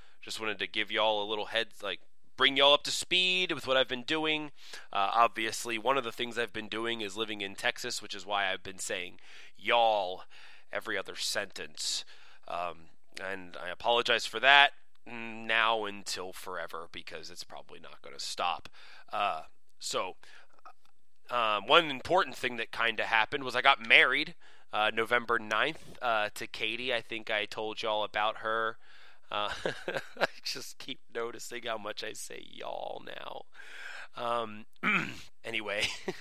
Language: English